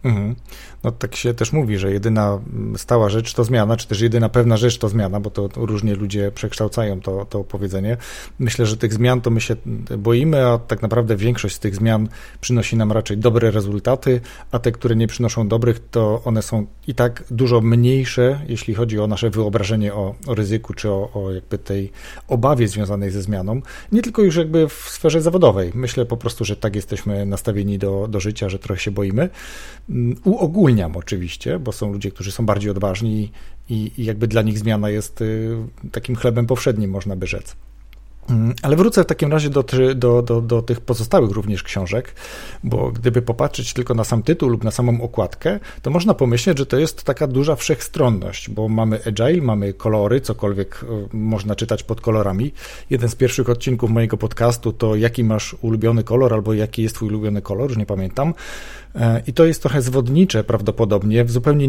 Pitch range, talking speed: 105-125 Hz, 185 wpm